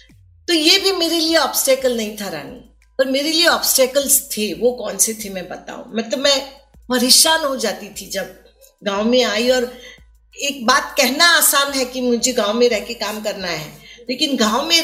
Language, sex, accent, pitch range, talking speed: Hindi, female, native, 215-285 Hz, 200 wpm